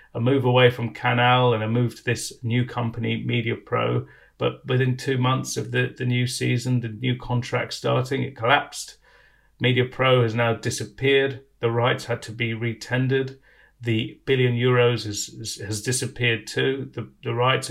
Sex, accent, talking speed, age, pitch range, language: male, British, 175 wpm, 40-59, 115-130 Hz, English